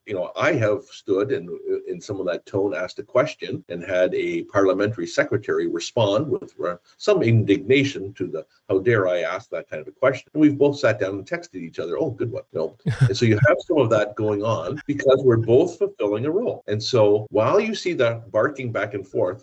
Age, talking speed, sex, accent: 50-69, 220 wpm, male, American